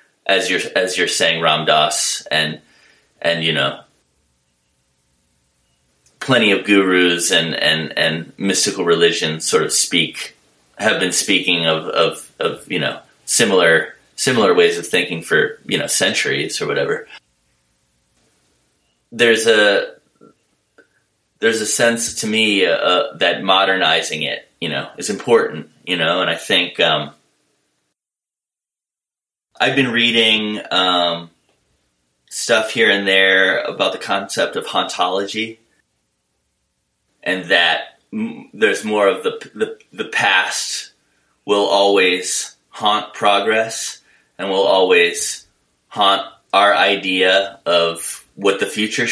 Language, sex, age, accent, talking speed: English, male, 30-49, American, 120 wpm